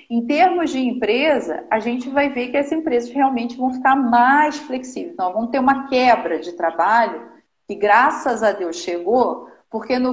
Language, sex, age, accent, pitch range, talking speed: Portuguese, female, 40-59, Brazilian, 200-275 Hz, 180 wpm